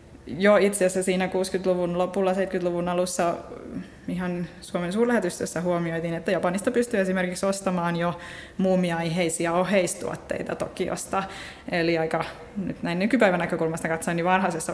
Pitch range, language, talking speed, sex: 175-195 Hz, Finnish, 120 wpm, female